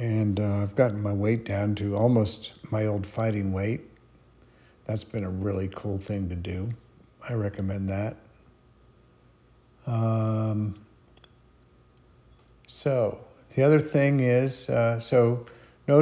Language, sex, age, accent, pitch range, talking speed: English, male, 50-69, American, 100-120 Hz, 125 wpm